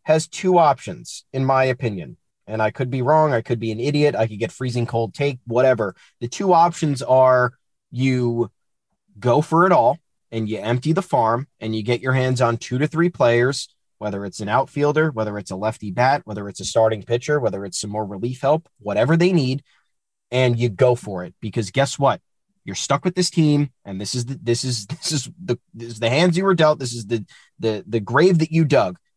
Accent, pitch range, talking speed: American, 120-165 Hz, 220 wpm